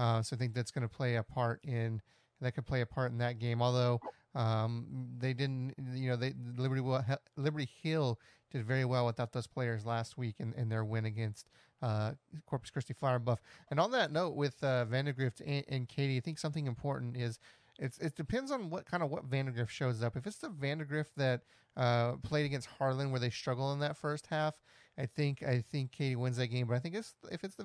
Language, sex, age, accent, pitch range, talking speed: English, male, 30-49, American, 120-140 Hz, 230 wpm